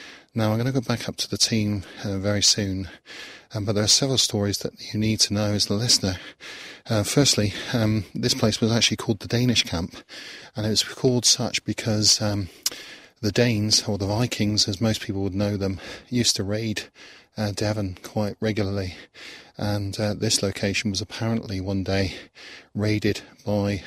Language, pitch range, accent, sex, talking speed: English, 100-115 Hz, British, male, 185 wpm